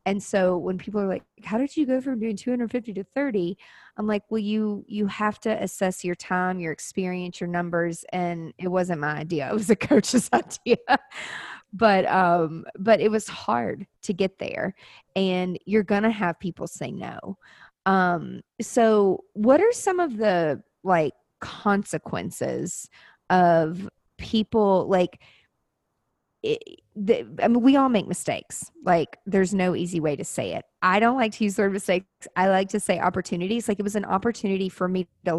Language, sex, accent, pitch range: English, female, American, 180-215 Hz